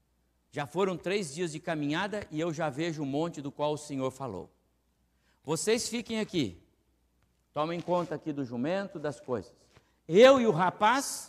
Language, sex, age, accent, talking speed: Portuguese, male, 60-79, Brazilian, 165 wpm